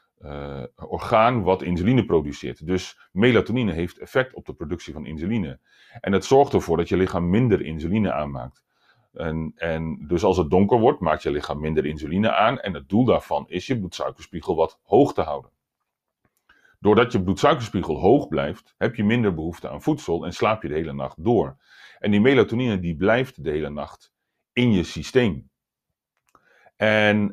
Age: 40-59